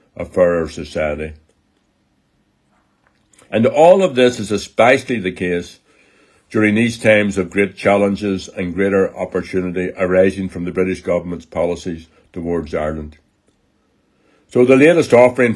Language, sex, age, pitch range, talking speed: English, male, 60-79, 85-105 Hz, 125 wpm